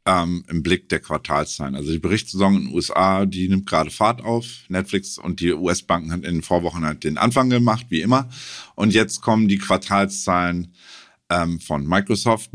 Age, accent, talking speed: 50-69, German, 180 wpm